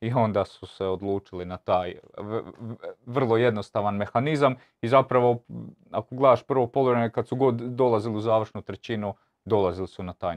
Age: 30-49